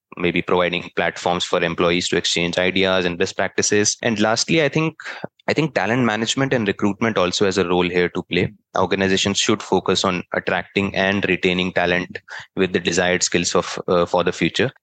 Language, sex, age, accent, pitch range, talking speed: English, male, 20-39, Indian, 90-105 Hz, 180 wpm